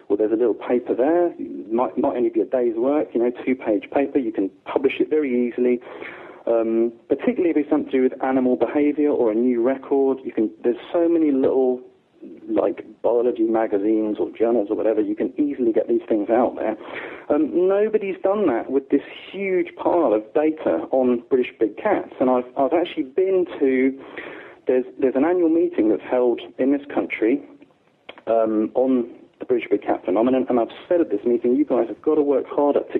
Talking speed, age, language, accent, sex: 200 wpm, 40-59, English, British, male